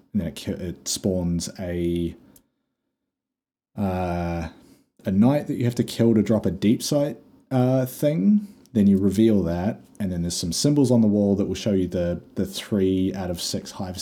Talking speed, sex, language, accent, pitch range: 185 wpm, male, English, Australian, 85-110 Hz